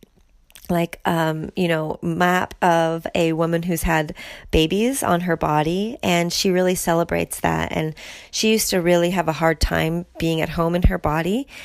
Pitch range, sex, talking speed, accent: 160-180 Hz, female, 175 wpm, American